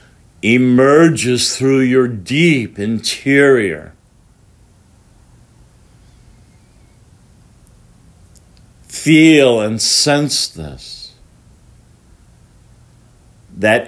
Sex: male